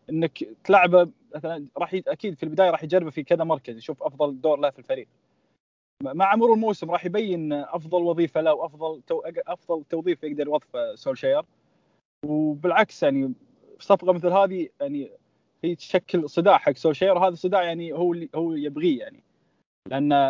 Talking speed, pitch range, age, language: 155 wpm, 155-190 Hz, 20-39, Arabic